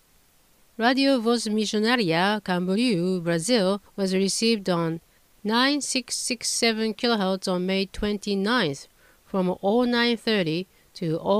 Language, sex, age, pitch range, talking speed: English, female, 50-69, 185-230 Hz, 80 wpm